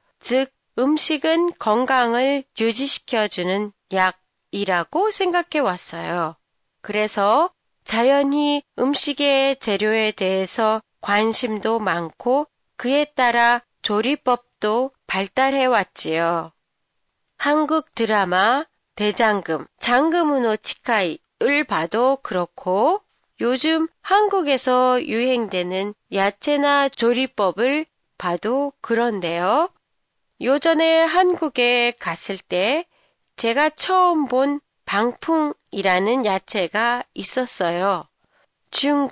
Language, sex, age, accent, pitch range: Japanese, female, 30-49, Korean, 200-290 Hz